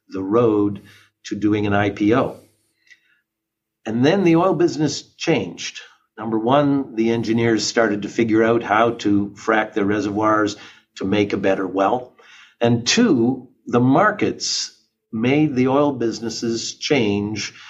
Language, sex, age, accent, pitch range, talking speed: English, male, 50-69, American, 110-130 Hz, 130 wpm